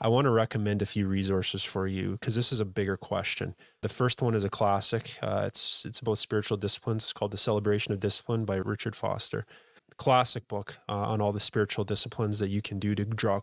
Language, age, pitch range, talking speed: English, 20-39, 100-115 Hz, 225 wpm